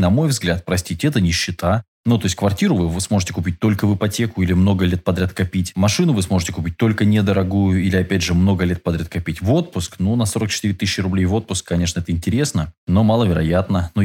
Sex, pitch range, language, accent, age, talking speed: male, 90-110 Hz, Russian, native, 20-39, 210 wpm